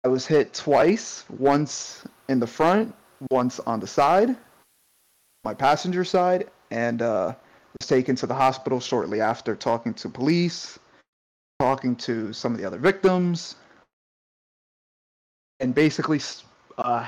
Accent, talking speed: American, 130 wpm